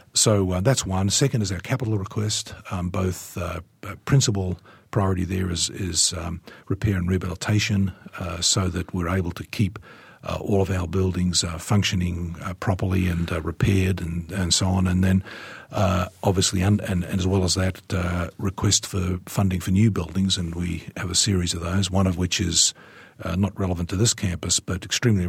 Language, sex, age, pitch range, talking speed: English, male, 50-69, 90-100 Hz, 190 wpm